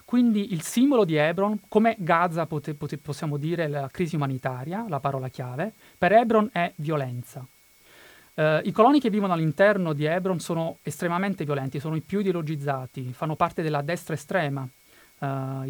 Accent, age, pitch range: native, 30-49, 145-195 Hz